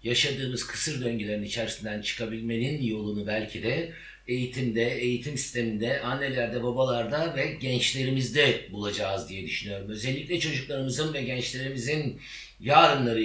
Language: Turkish